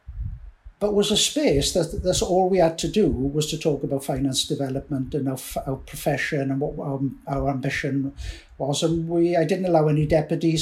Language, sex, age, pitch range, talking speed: English, male, 60-79, 140-160 Hz, 190 wpm